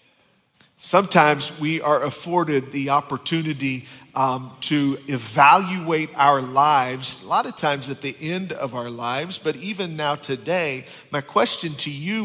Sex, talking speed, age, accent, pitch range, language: male, 140 wpm, 50-69, American, 130-165 Hz, English